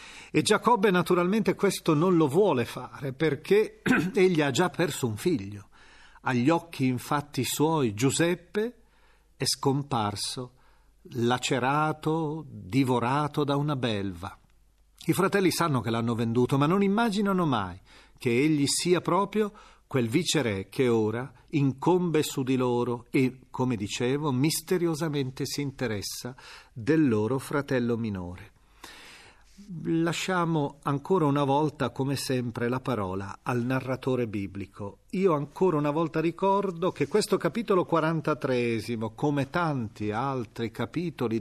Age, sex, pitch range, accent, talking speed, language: 40-59, male, 125-180 Hz, native, 120 wpm, Italian